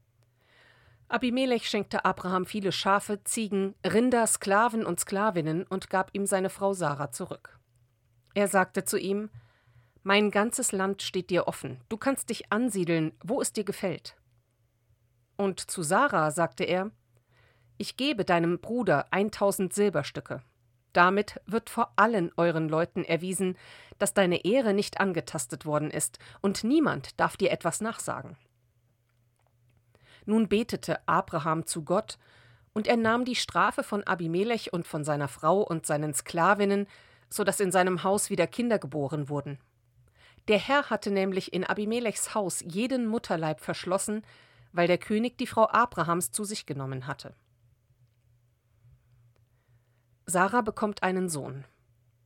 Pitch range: 125-205 Hz